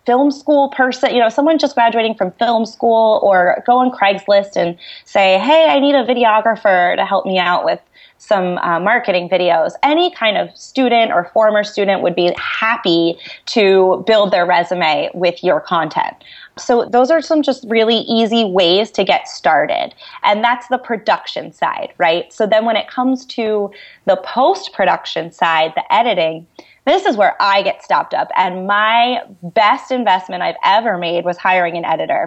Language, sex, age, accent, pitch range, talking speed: English, female, 30-49, American, 180-235 Hz, 175 wpm